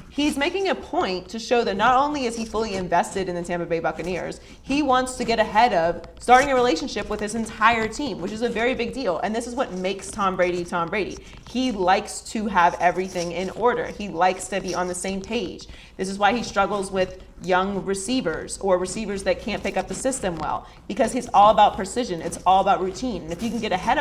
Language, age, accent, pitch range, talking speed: English, 30-49, American, 180-235 Hz, 230 wpm